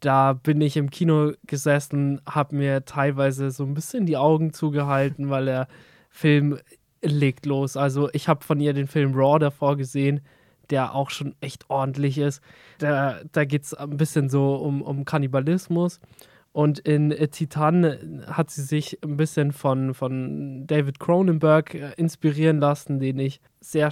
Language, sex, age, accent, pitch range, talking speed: German, male, 20-39, German, 140-155 Hz, 160 wpm